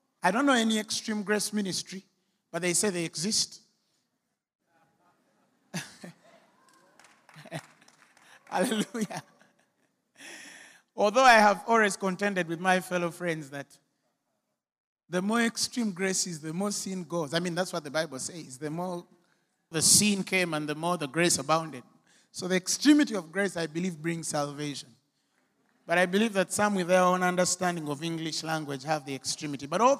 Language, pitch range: English, 170-235 Hz